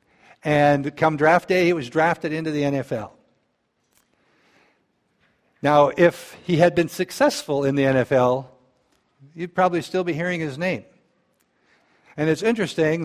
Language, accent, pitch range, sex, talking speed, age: English, American, 130-170 Hz, male, 135 wpm, 60-79